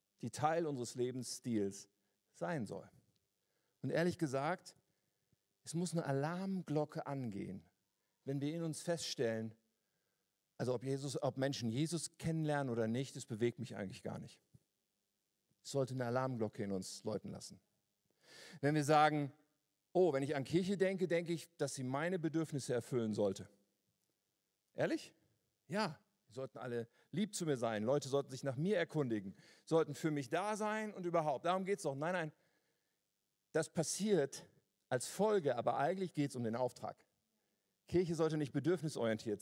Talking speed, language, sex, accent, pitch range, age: 150 wpm, German, male, German, 125-170 Hz, 50-69